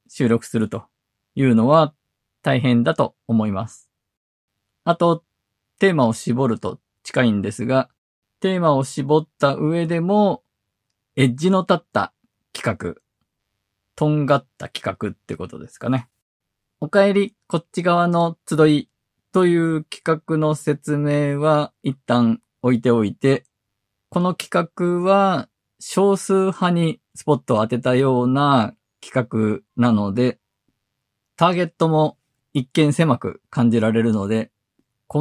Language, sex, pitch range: Japanese, male, 115-155 Hz